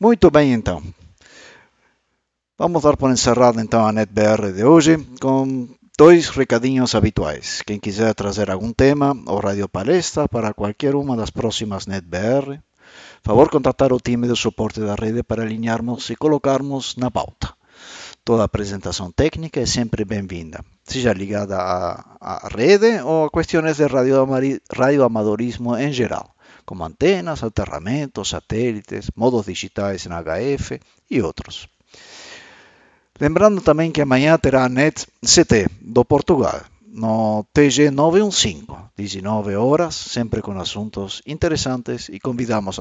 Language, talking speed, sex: Portuguese, 130 wpm, male